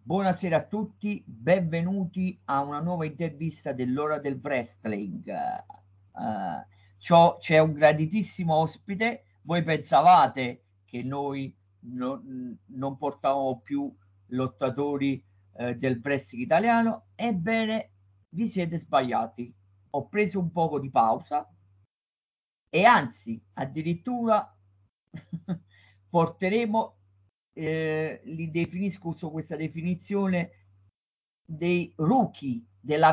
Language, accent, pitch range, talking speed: Italian, native, 120-170 Hz, 90 wpm